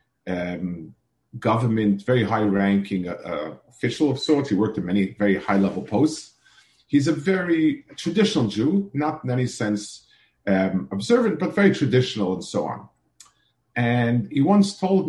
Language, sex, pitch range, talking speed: English, male, 100-130 Hz, 140 wpm